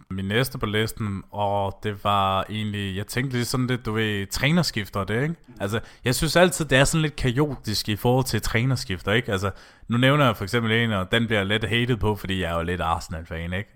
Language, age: Danish, 30-49